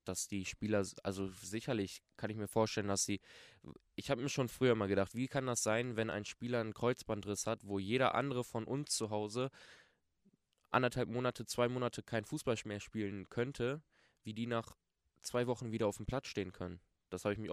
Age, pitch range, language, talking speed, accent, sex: 20-39, 95-115 Hz, German, 200 wpm, German, male